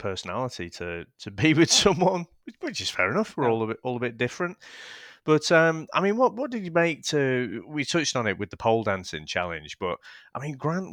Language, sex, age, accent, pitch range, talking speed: English, male, 30-49, British, 95-140 Hz, 225 wpm